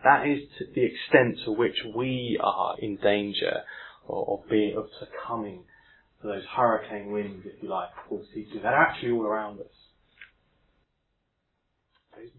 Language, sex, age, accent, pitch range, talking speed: English, male, 20-39, British, 125-160 Hz, 140 wpm